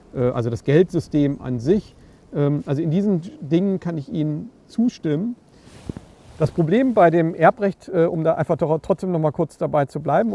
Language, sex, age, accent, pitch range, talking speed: German, male, 50-69, German, 140-180 Hz, 160 wpm